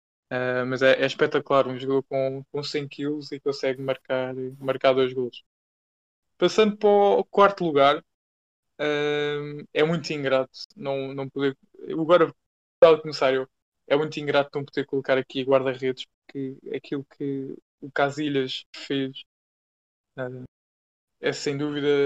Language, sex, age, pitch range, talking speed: Portuguese, male, 20-39, 130-145 Hz, 140 wpm